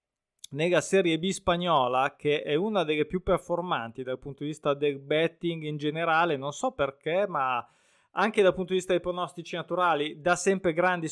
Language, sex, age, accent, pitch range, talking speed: Italian, male, 20-39, native, 135-175 Hz, 180 wpm